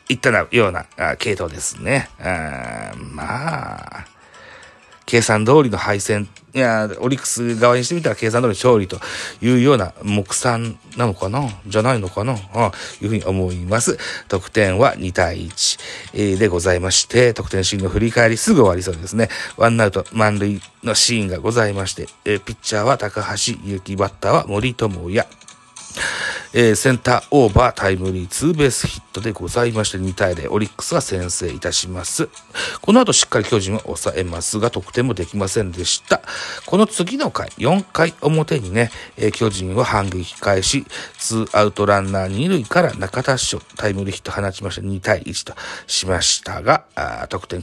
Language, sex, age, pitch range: Japanese, male, 40-59, 95-120 Hz